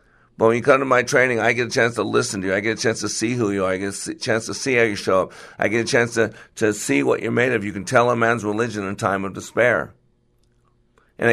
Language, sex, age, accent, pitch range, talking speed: English, male, 50-69, American, 105-120 Hz, 300 wpm